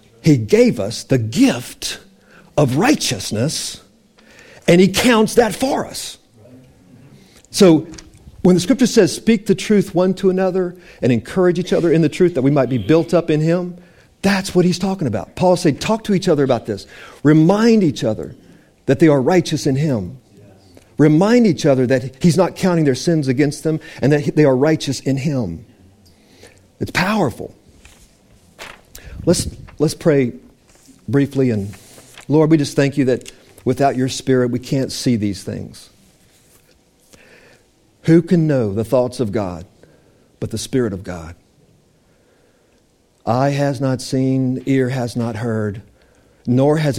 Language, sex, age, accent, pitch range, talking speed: English, male, 50-69, American, 115-160 Hz, 155 wpm